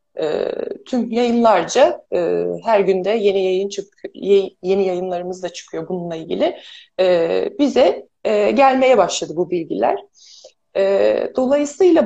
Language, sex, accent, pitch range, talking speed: Turkish, female, native, 200-285 Hz, 95 wpm